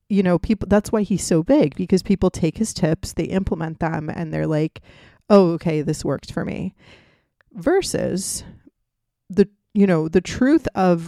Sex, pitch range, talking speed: female, 160-195 Hz, 175 wpm